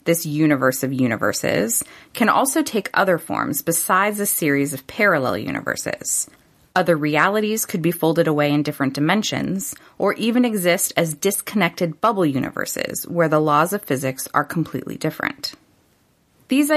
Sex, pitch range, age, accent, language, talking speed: female, 150-195 Hz, 20-39, American, English, 145 wpm